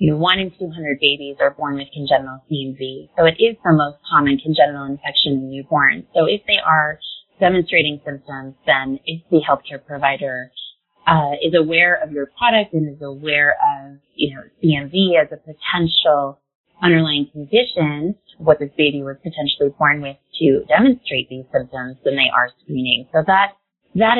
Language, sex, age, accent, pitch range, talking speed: English, female, 30-49, American, 140-165 Hz, 170 wpm